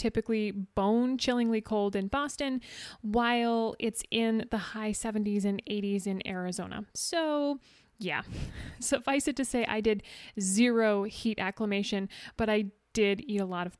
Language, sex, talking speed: English, female, 150 wpm